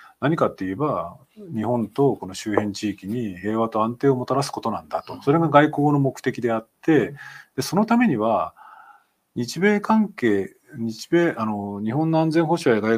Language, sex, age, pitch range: Japanese, male, 40-59, 110-160 Hz